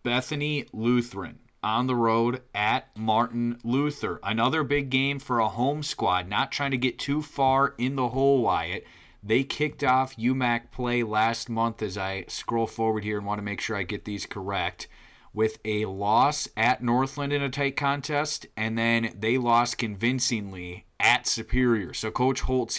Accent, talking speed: American, 170 wpm